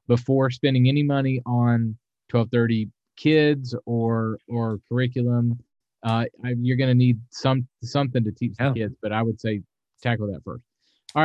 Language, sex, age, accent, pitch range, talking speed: English, male, 40-59, American, 120-155 Hz, 160 wpm